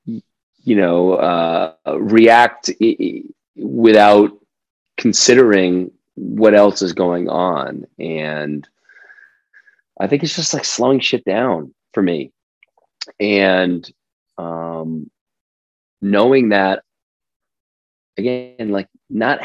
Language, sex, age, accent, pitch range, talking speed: English, male, 30-49, American, 85-115 Hz, 90 wpm